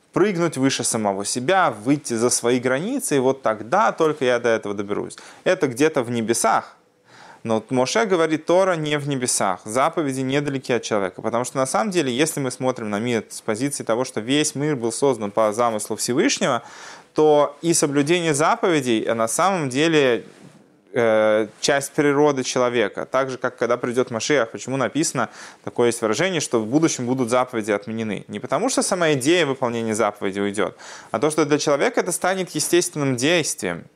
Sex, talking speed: male, 170 wpm